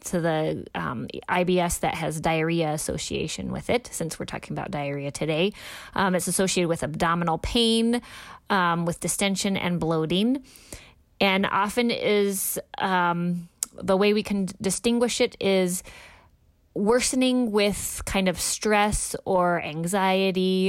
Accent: American